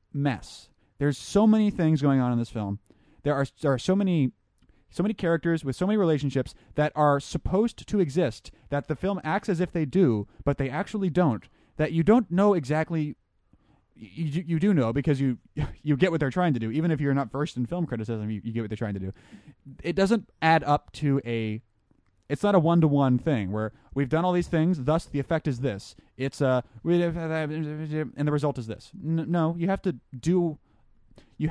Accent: American